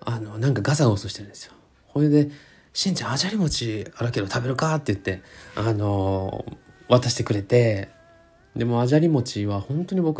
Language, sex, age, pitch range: Japanese, male, 20-39, 105-145 Hz